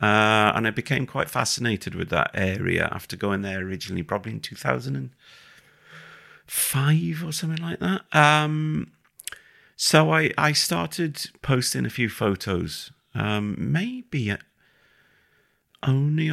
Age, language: 40-59, English